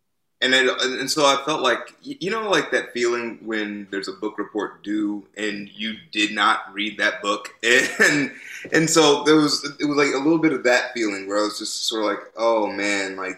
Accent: American